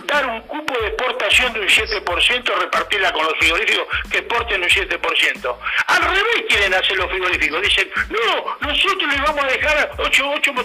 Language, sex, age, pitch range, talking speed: Spanish, male, 60-79, 255-425 Hz, 175 wpm